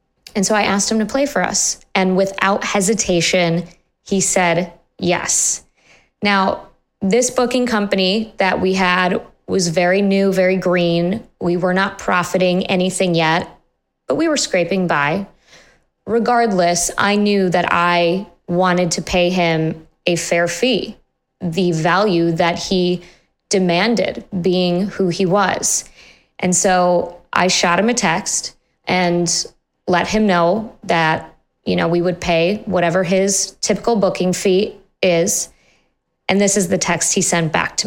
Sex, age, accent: female, 20-39, American